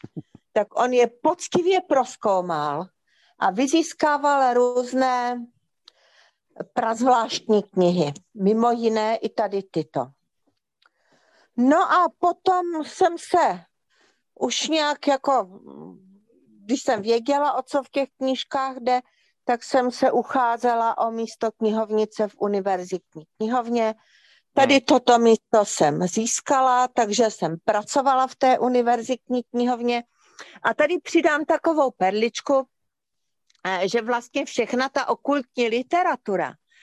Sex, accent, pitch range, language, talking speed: female, native, 215-270 Hz, Czech, 110 wpm